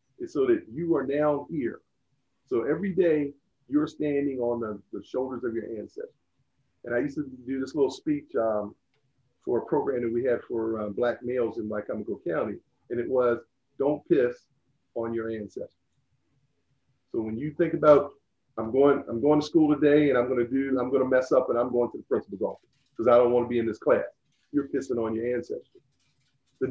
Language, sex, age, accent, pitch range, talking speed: English, male, 50-69, American, 120-165 Hz, 205 wpm